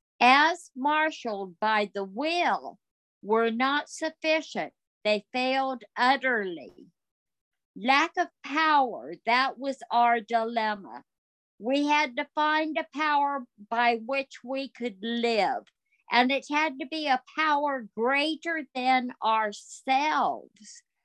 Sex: female